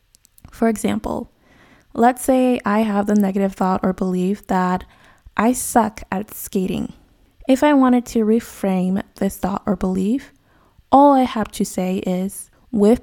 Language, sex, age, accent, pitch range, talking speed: English, female, 20-39, American, 190-230 Hz, 145 wpm